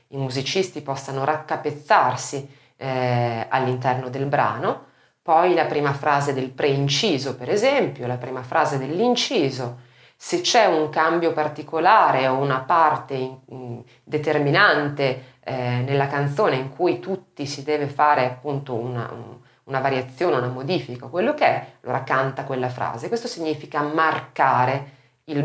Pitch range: 130-165 Hz